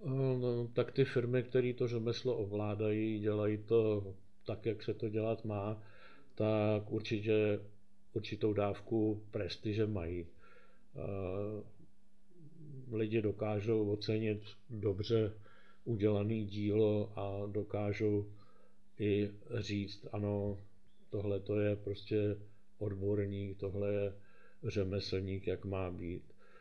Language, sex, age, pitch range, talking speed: Czech, male, 50-69, 100-105 Hz, 100 wpm